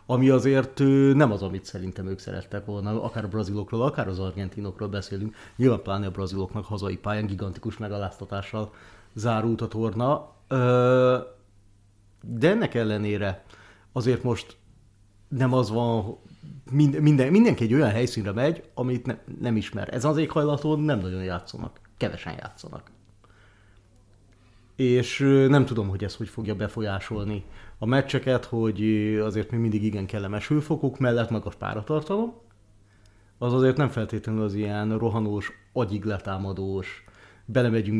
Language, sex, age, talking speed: Hungarian, male, 30-49, 130 wpm